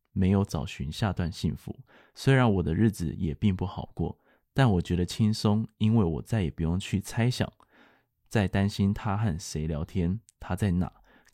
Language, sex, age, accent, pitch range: Chinese, male, 20-39, native, 90-115 Hz